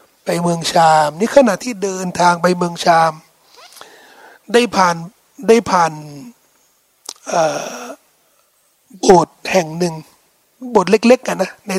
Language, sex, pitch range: Thai, male, 180-265 Hz